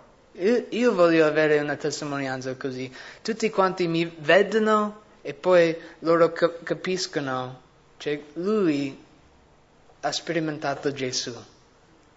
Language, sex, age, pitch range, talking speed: English, male, 20-39, 145-165 Hz, 95 wpm